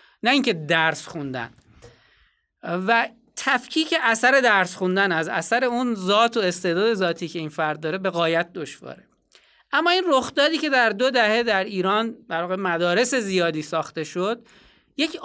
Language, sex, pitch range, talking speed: Persian, male, 175-245 Hz, 150 wpm